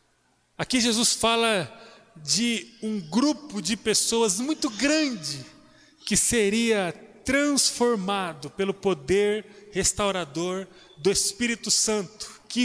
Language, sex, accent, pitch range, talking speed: Portuguese, male, Brazilian, 195-245 Hz, 95 wpm